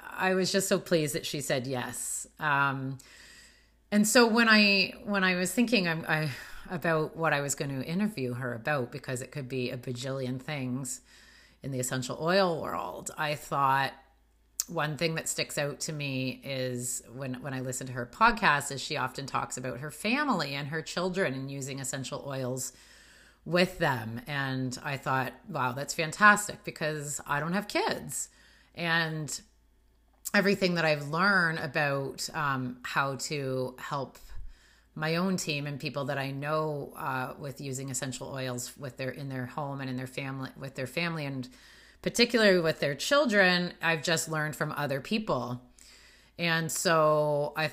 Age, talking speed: 30-49, 170 wpm